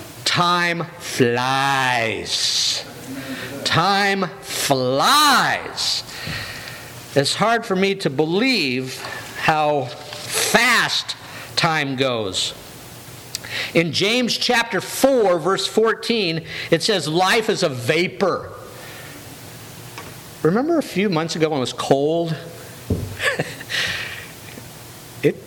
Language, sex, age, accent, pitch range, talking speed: English, male, 50-69, American, 125-170 Hz, 85 wpm